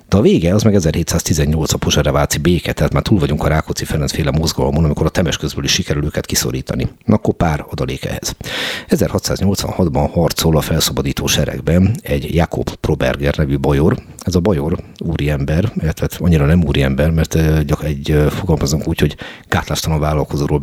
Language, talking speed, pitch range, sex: Hungarian, 160 wpm, 70-90 Hz, male